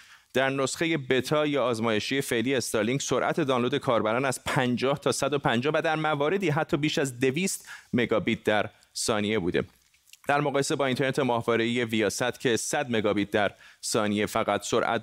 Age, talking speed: 30-49, 160 wpm